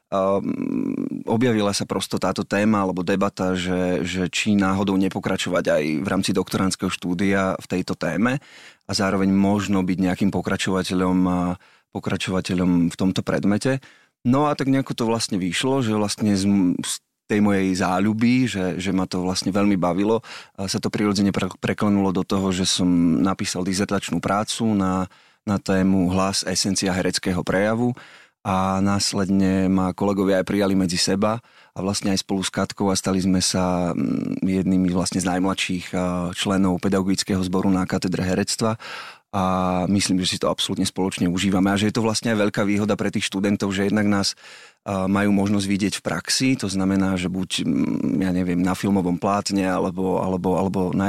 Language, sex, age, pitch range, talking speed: Slovak, male, 30-49, 95-100 Hz, 165 wpm